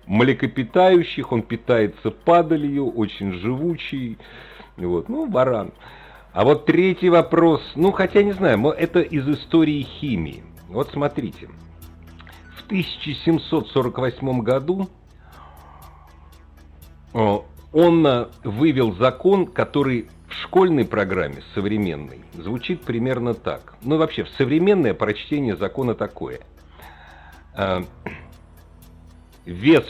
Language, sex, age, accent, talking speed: Russian, male, 50-69, native, 90 wpm